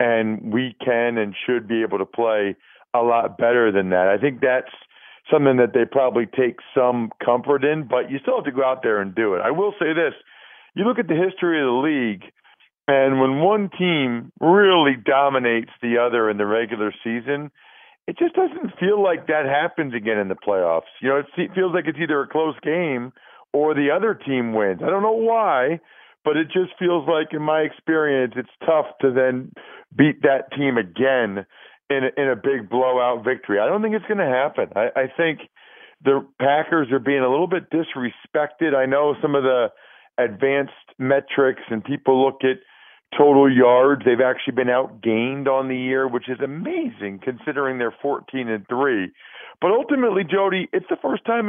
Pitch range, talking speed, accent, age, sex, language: 125-165 Hz, 190 wpm, American, 50-69, male, English